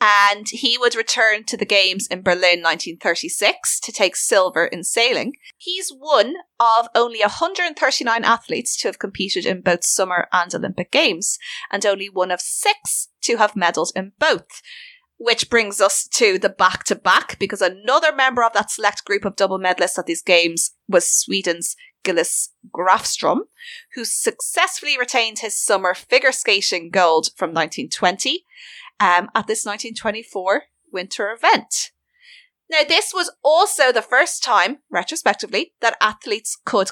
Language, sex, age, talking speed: English, female, 30-49, 145 wpm